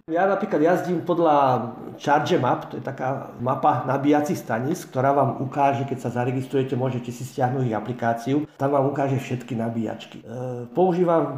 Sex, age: male, 50-69